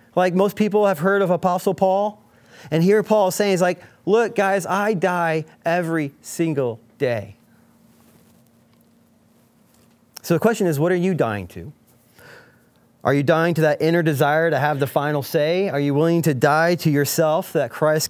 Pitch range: 150-200 Hz